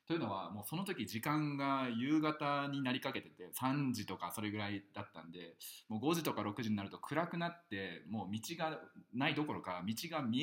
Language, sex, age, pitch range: Japanese, male, 20-39, 90-130 Hz